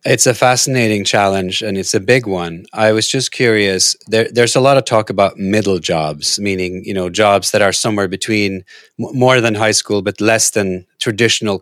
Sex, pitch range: male, 95-110 Hz